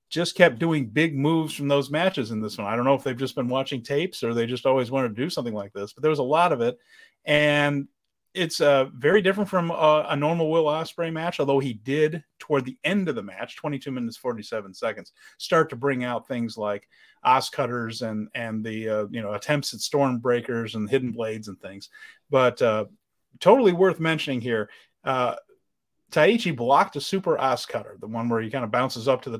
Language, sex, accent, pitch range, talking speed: English, male, American, 120-170 Hz, 225 wpm